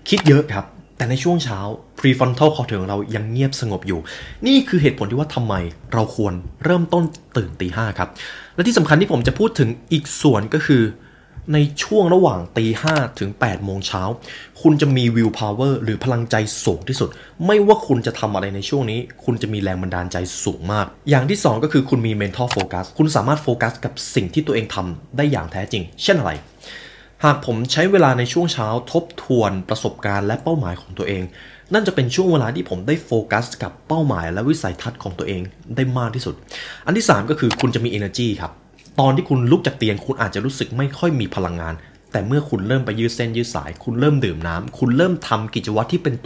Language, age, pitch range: Thai, 20-39, 100-145 Hz